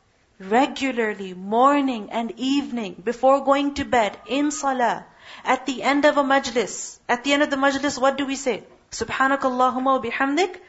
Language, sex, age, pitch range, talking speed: English, female, 40-59, 215-280 Hz, 165 wpm